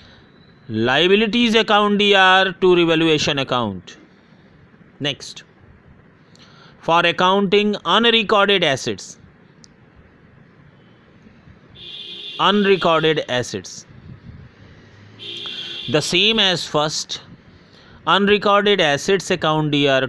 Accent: native